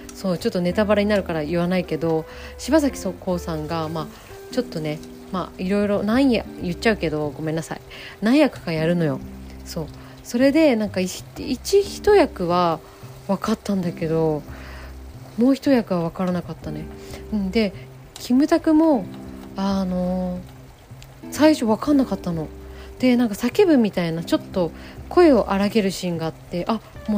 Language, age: Japanese, 20-39